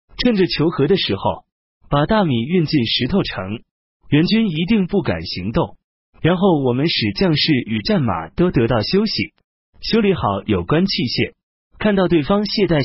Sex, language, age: male, Chinese, 30-49